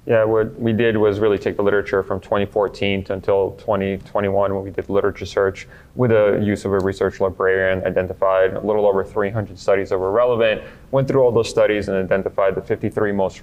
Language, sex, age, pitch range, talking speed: English, male, 30-49, 95-105 Hz, 195 wpm